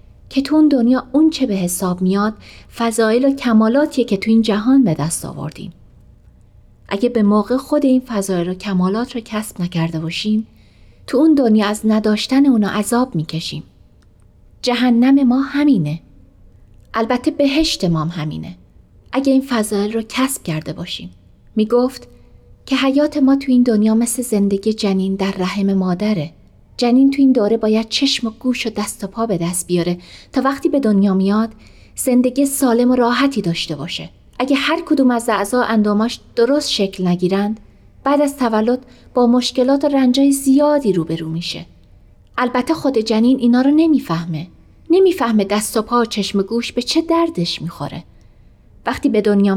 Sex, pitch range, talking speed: female, 180-255 Hz, 160 wpm